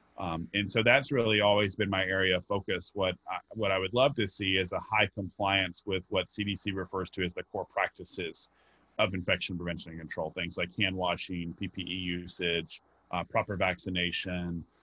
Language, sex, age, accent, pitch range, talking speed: English, male, 30-49, American, 90-110 Hz, 180 wpm